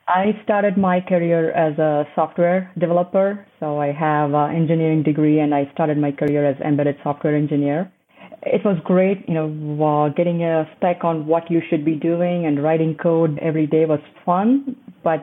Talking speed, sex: 175 wpm, female